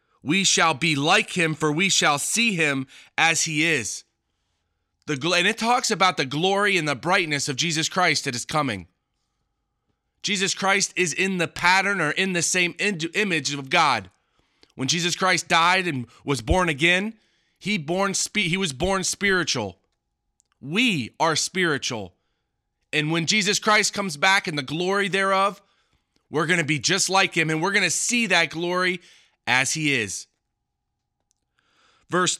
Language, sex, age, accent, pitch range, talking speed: English, male, 30-49, American, 145-195 Hz, 160 wpm